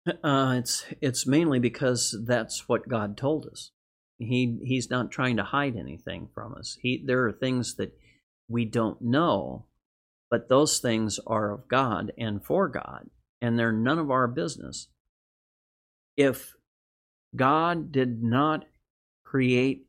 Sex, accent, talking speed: male, American, 140 wpm